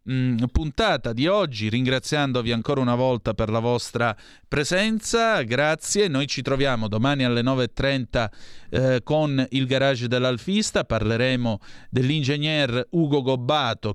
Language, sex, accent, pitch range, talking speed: Italian, male, native, 120-150 Hz, 110 wpm